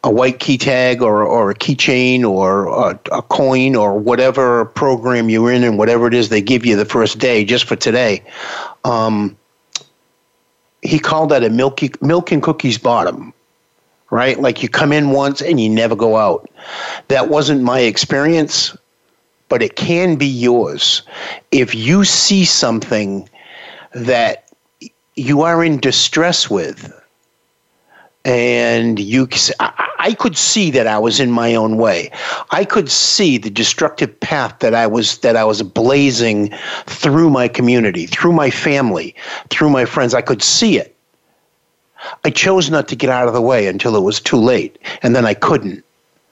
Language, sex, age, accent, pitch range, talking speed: English, male, 50-69, American, 115-155 Hz, 165 wpm